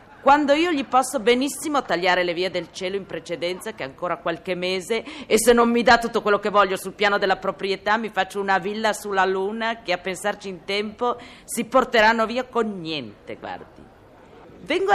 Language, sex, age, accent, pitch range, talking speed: Italian, female, 40-59, native, 190-255 Hz, 195 wpm